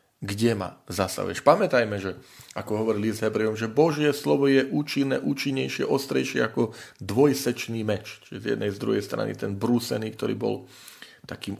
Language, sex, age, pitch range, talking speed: Slovak, male, 40-59, 105-135 Hz, 155 wpm